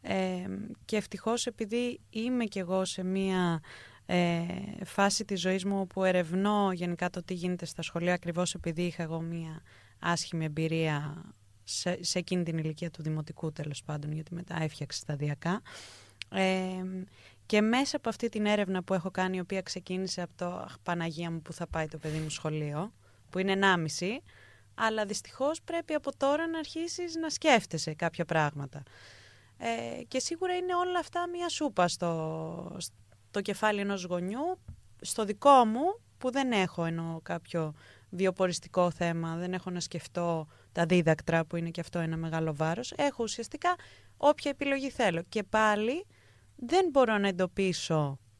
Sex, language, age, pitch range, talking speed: female, Greek, 20-39, 165-220 Hz, 155 wpm